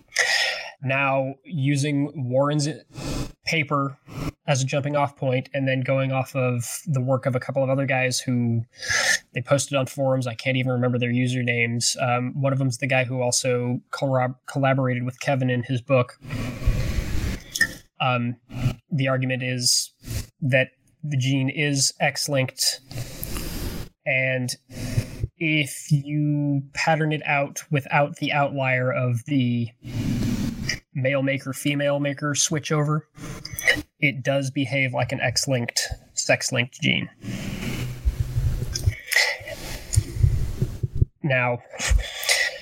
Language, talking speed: English, 115 wpm